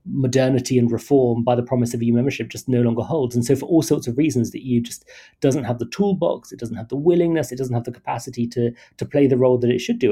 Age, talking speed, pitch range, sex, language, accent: 30-49, 275 wpm, 115-140 Hz, male, English, British